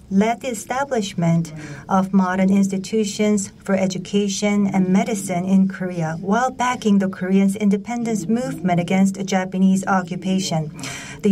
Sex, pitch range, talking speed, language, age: female, 180-215 Hz, 115 wpm, English, 50-69